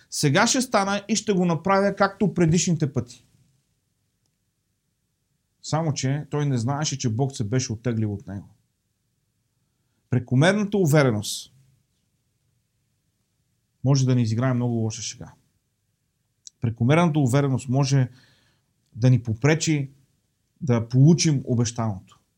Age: 40-59